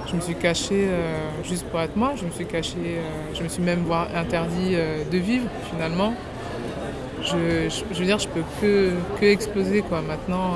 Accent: French